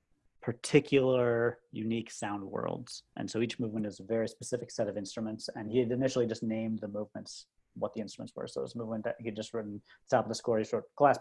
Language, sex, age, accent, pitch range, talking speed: English, male, 30-49, American, 110-130 Hz, 235 wpm